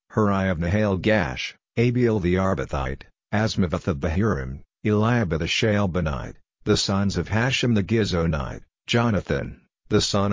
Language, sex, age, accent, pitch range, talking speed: English, male, 50-69, American, 90-115 Hz, 120 wpm